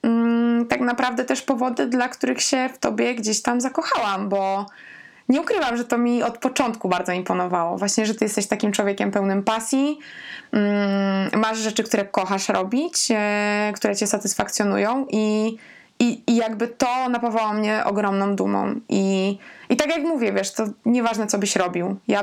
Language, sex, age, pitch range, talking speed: Polish, female, 20-39, 195-240 Hz, 160 wpm